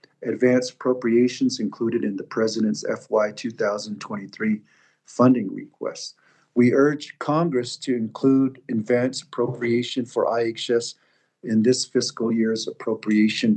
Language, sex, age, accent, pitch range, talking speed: English, male, 50-69, American, 115-145 Hz, 105 wpm